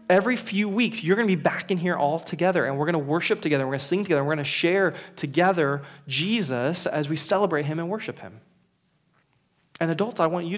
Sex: male